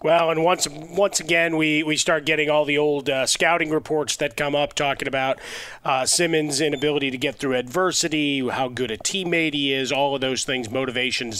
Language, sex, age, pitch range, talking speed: English, male, 30-49, 125-145 Hz, 200 wpm